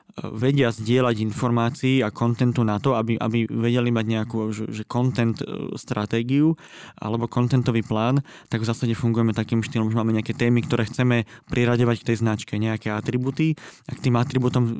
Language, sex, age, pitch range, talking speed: Slovak, male, 20-39, 110-125 Hz, 160 wpm